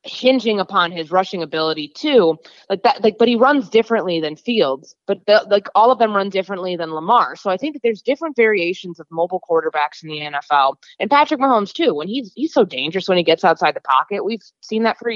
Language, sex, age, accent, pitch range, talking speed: English, female, 20-39, American, 160-210 Hz, 225 wpm